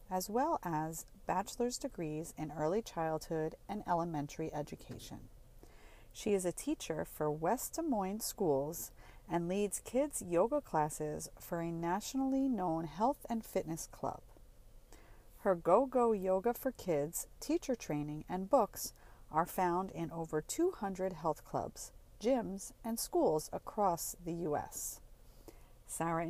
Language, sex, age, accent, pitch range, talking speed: English, female, 40-59, American, 155-195 Hz, 130 wpm